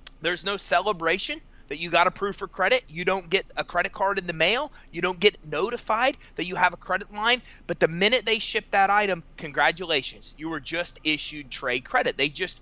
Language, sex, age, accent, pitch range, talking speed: English, male, 30-49, American, 155-200 Hz, 210 wpm